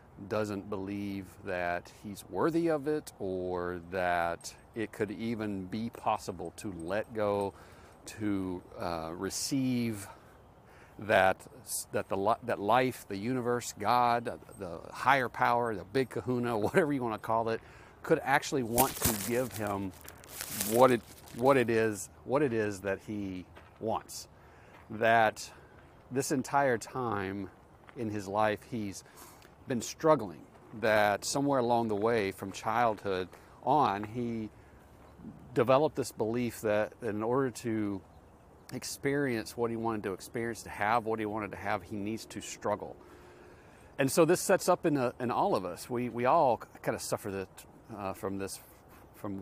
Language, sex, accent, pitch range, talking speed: English, male, American, 95-120 Hz, 150 wpm